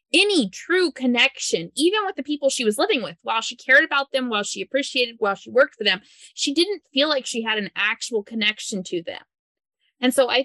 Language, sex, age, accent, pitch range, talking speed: English, female, 20-39, American, 210-280 Hz, 220 wpm